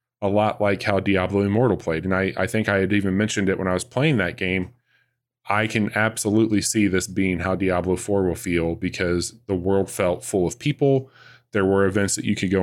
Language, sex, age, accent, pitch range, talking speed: English, male, 20-39, American, 95-115 Hz, 225 wpm